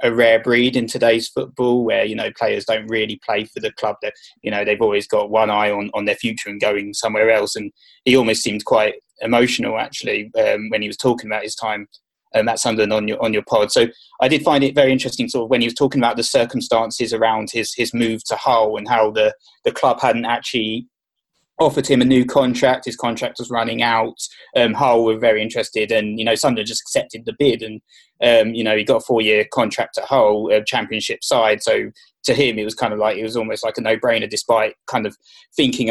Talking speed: 230 wpm